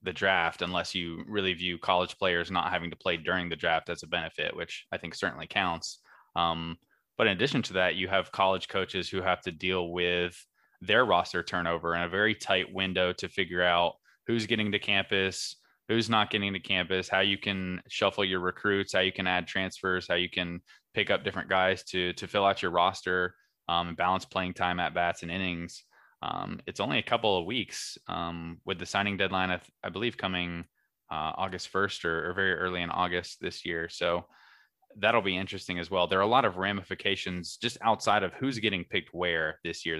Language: English